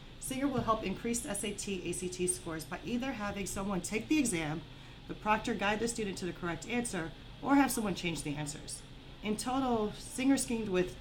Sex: female